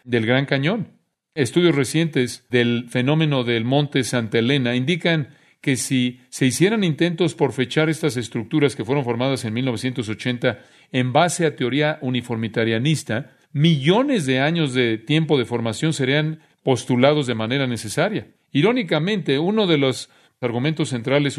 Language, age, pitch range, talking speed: Spanish, 40-59, 120-150 Hz, 135 wpm